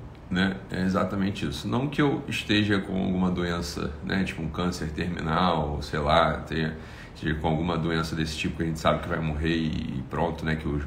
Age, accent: 40-59, Brazilian